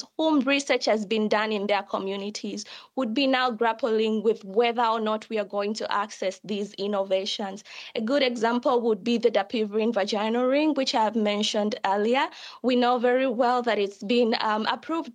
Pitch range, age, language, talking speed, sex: 215-255 Hz, 20-39, Danish, 180 wpm, female